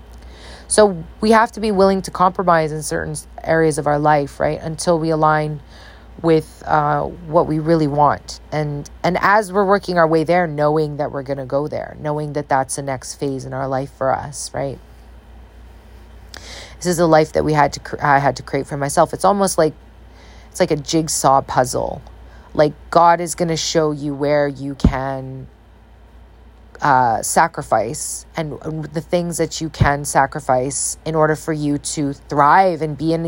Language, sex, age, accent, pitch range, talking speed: English, female, 30-49, American, 135-175 Hz, 185 wpm